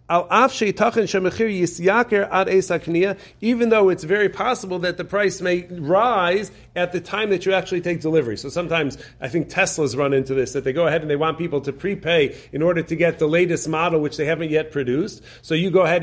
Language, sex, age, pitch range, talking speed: English, male, 40-59, 155-190 Hz, 195 wpm